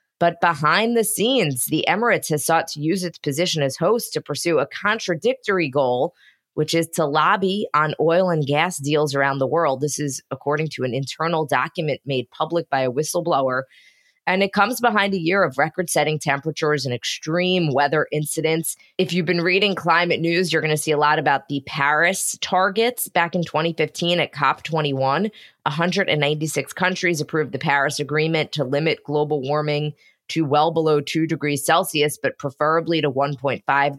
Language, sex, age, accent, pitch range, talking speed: English, female, 20-39, American, 145-180 Hz, 170 wpm